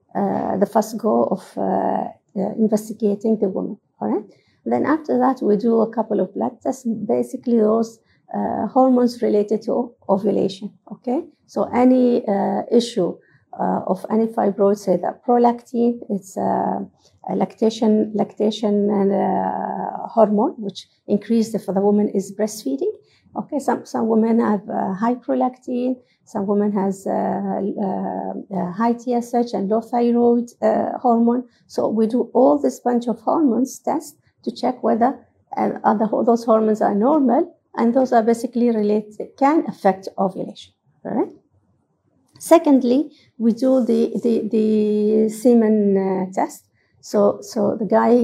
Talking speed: 150 wpm